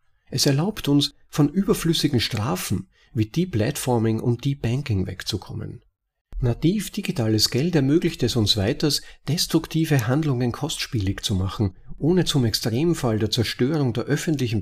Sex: male